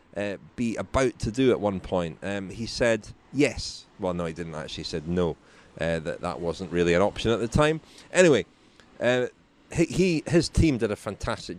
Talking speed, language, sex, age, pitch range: 200 wpm, English, male, 30-49, 95-130 Hz